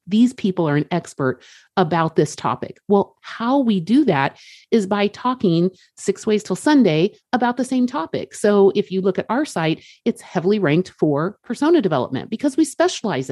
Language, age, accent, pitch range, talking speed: English, 40-59, American, 165-245 Hz, 180 wpm